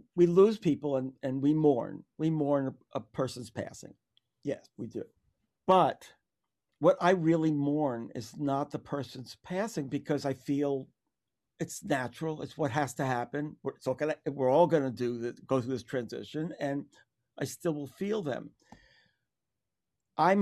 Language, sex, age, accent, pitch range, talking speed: English, male, 50-69, American, 130-160 Hz, 155 wpm